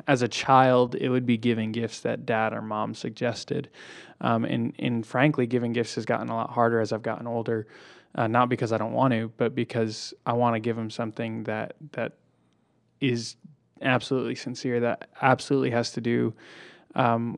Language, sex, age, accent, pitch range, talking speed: English, male, 20-39, American, 115-130 Hz, 185 wpm